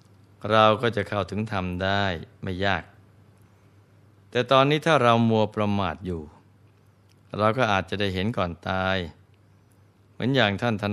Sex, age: male, 20-39